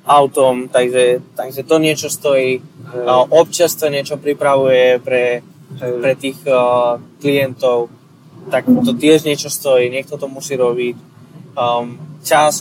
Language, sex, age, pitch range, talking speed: Slovak, male, 20-39, 130-165 Hz, 125 wpm